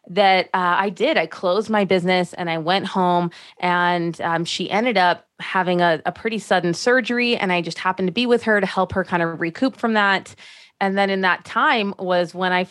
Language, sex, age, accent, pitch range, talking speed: English, female, 20-39, American, 170-215 Hz, 220 wpm